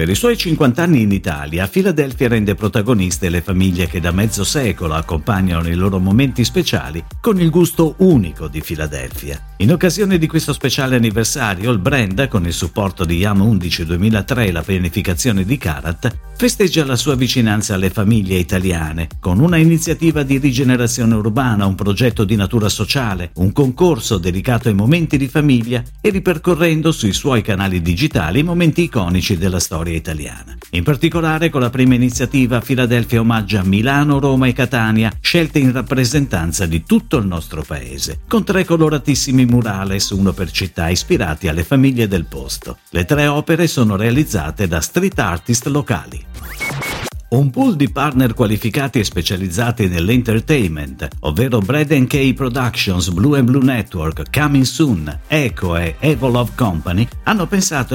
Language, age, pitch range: Italian, 50-69, 90-140 Hz